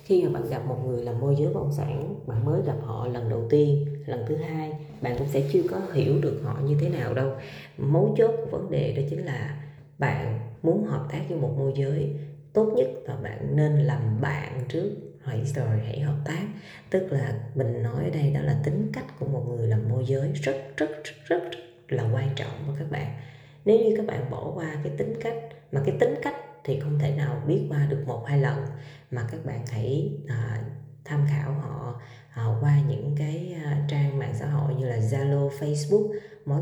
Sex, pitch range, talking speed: female, 135-155 Hz, 220 wpm